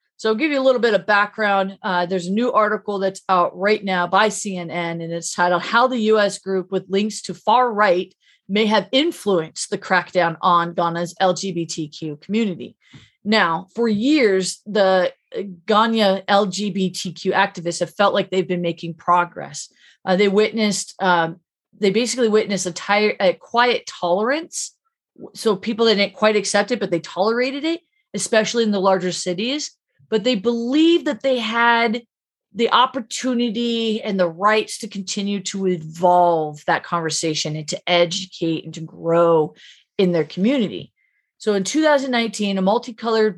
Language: English